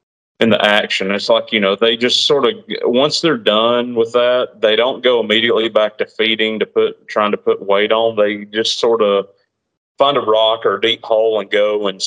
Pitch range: 100-125 Hz